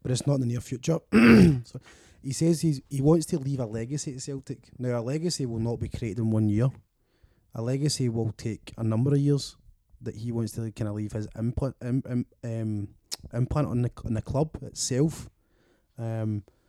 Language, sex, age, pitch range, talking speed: English, male, 20-39, 110-130 Hz, 195 wpm